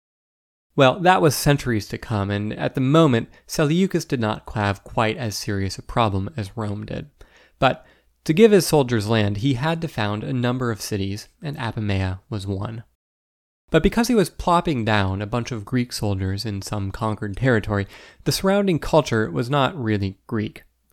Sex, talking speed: male, 180 wpm